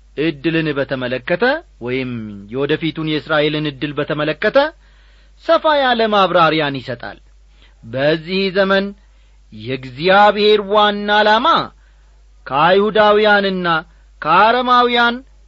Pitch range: 130-205 Hz